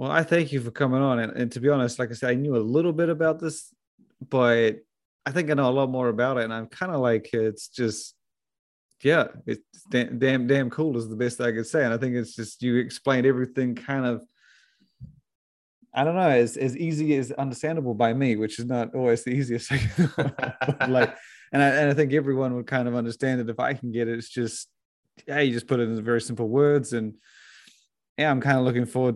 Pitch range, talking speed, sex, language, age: 115-135 Hz, 235 wpm, male, English, 30-49